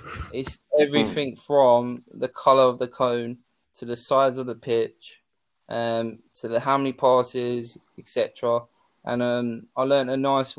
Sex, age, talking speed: male, 20-39, 155 wpm